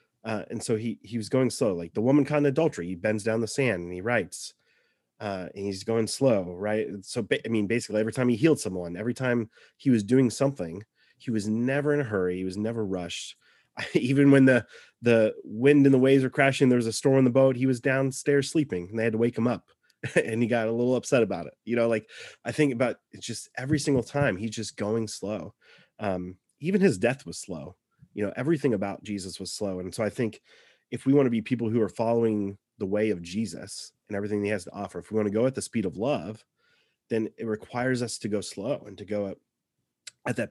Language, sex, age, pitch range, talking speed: English, male, 30-49, 105-125 Hz, 245 wpm